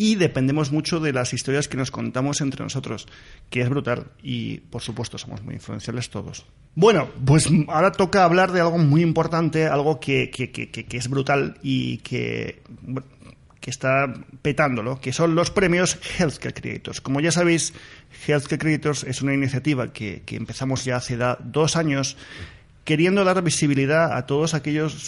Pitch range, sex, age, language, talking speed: 125-155 Hz, male, 30-49, Spanish, 165 wpm